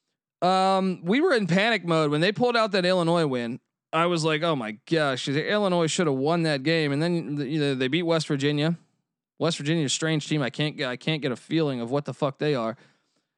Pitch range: 145-180 Hz